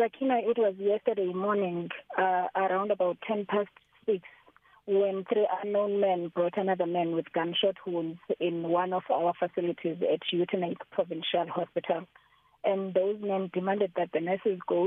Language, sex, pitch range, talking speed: English, female, 170-200 Hz, 150 wpm